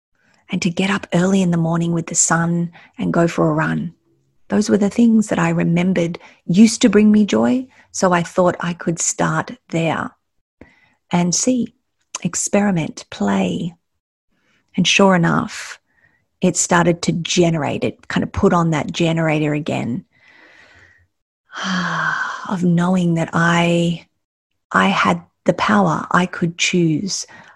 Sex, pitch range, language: female, 155-185 Hz, English